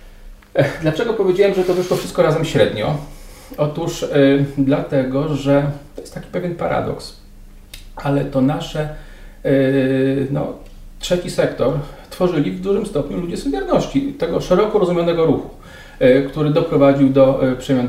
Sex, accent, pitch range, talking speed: male, native, 120-165 Hz, 115 wpm